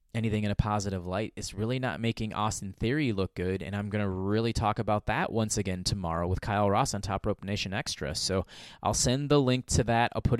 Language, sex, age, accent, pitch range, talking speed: English, male, 20-39, American, 100-120 Hz, 235 wpm